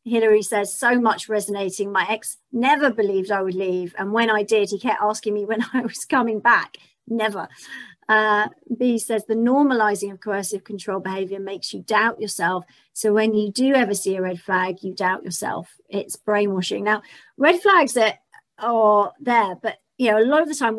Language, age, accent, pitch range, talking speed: English, 40-59, British, 200-245 Hz, 195 wpm